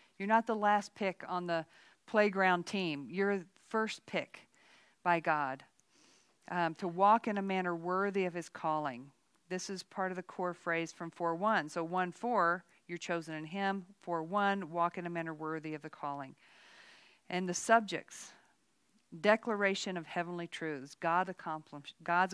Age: 50-69